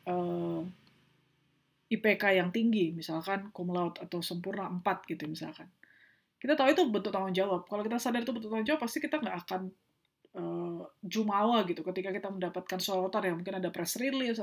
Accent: native